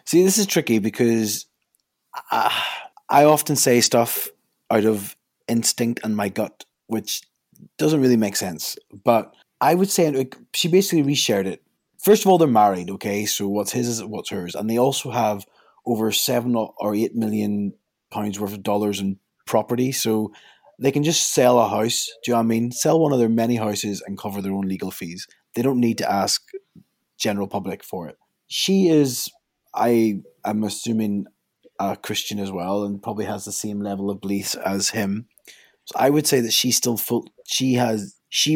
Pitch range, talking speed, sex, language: 105-125 Hz, 185 wpm, male, English